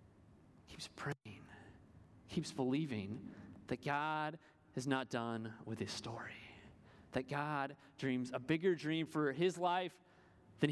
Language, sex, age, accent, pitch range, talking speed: English, male, 30-49, American, 125-180 Hz, 120 wpm